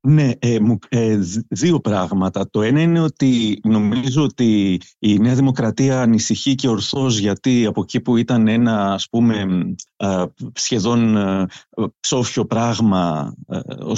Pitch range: 100-130 Hz